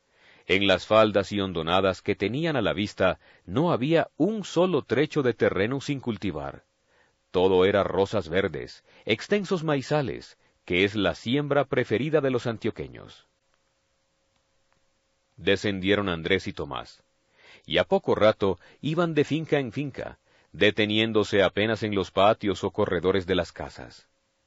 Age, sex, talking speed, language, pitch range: 40-59, male, 135 wpm, Spanish, 95-140 Hz